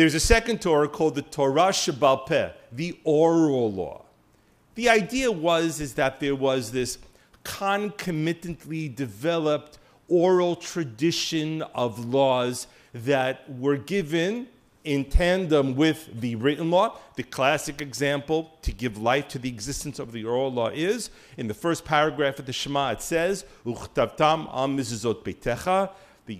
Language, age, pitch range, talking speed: English, 50-69, 125-165 Hz, 140 wpm